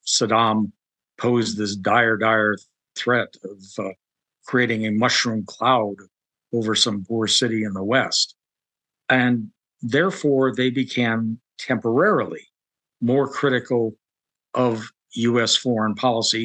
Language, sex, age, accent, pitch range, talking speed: English, male, 60-79, American, 110-135 Hz, 110 wpm